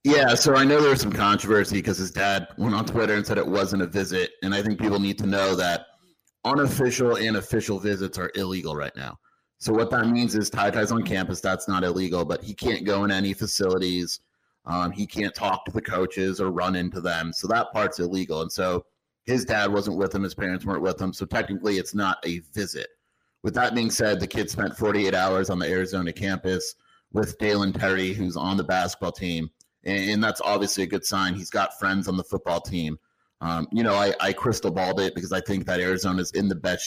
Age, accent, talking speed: 30-49, American, 225 wpm